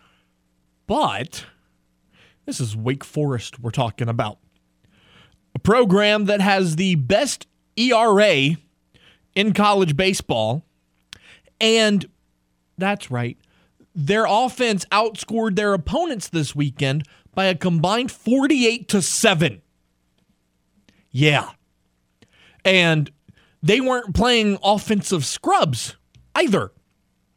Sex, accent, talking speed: male, American, 90 wpm